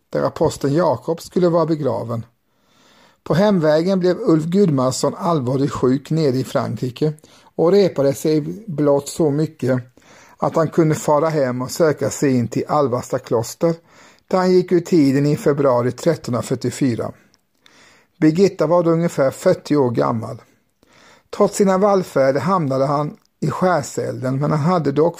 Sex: male